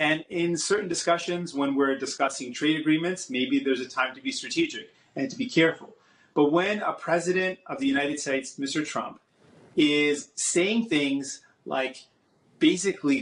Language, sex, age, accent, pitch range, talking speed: English, male, 30-49, American, 135-170 Hz, 160 wpm